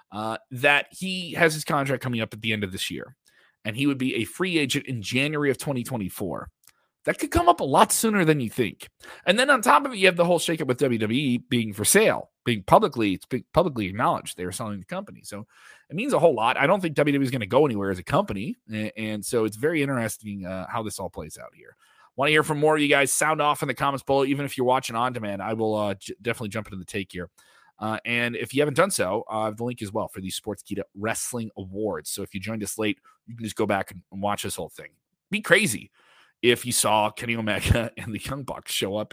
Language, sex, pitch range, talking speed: English, male, 105-140 Hz, 260 wpm